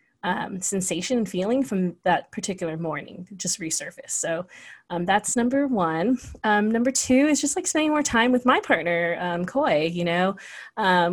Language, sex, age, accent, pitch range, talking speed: English, female, 30-49, American, 180-230 Hz, 175 wpm